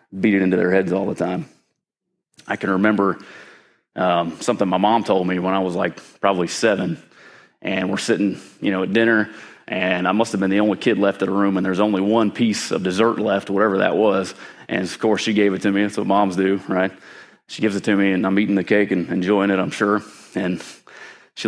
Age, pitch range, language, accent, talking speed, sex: 30-49, 95-115 Hz, English, American, 230 wpm, male